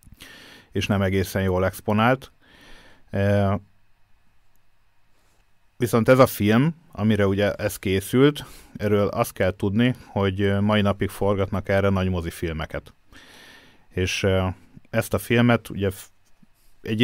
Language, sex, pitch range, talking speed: Hungarian, male, 95-110 Hz, 105 wpm